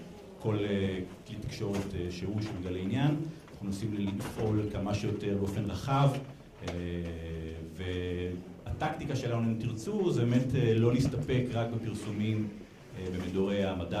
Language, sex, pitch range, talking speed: Hebrew, male, 95-120 Hz, 105 wpm